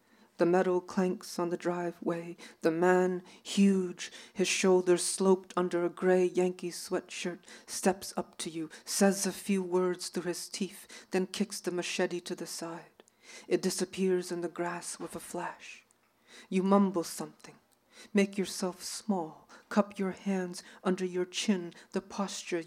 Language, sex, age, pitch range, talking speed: English, female, 40-59, 175-195 Hz, 150 wpm